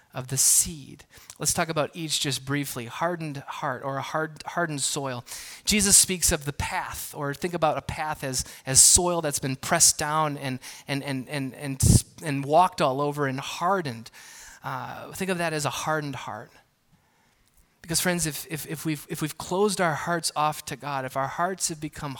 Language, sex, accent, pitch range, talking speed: English, male, American, 140-170 Hz, 190 wpm